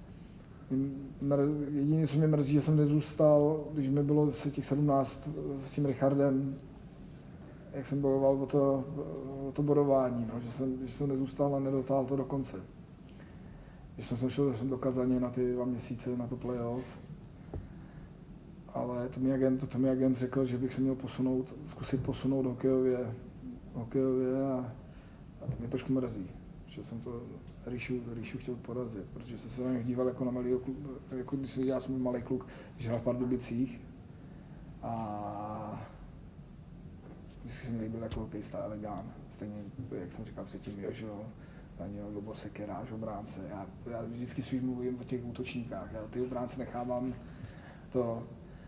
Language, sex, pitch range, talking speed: Czech, male, 125-135 Hz, 155 wpm